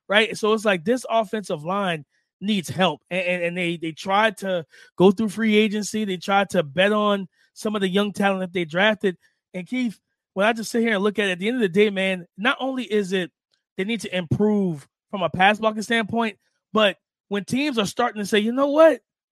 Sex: male